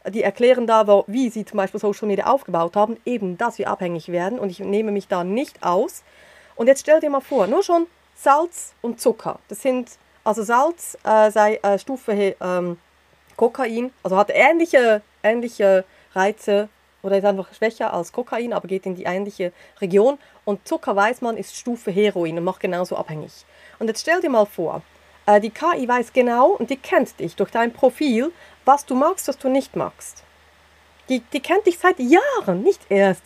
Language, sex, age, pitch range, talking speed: German, female, 40-59, 200-270 Hz, 190 wpm